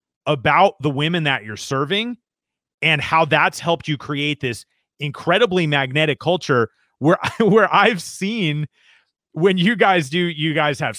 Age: 30-49